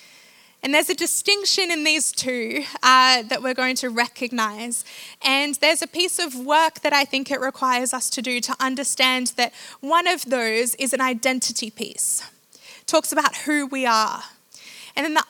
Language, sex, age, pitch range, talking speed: English, female, 20-39, 240-280 Hz, 175 wpm